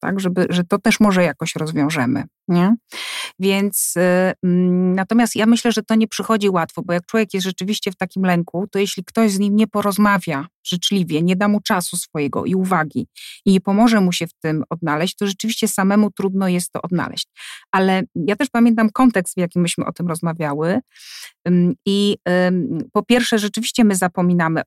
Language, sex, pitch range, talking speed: Polish, female, 175-220 Hz, 170 wpm